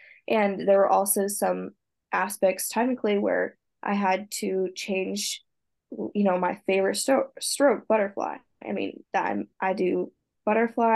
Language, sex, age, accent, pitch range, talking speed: English, female, 10-29, American, 190-215 Hz, 130 wpm